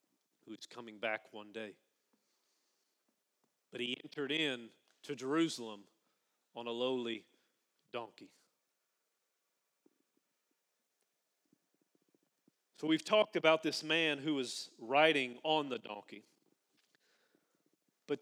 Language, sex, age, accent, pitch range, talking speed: English, male, 40-59, American, 130-175 Hz, 95 wpm